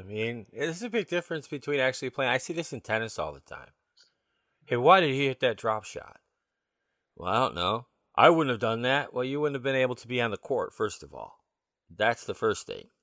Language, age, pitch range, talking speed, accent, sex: English, 40-59, 110-145 Hz, 240 wpm, American, male